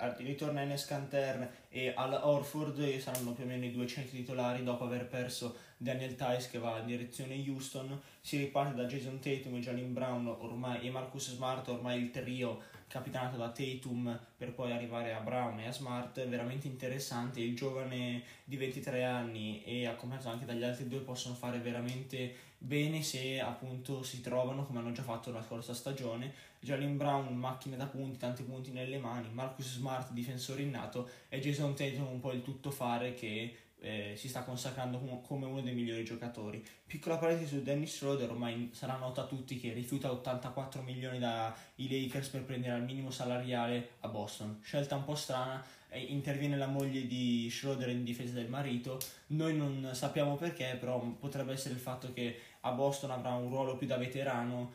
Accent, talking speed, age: native, 180 wpm, 20-39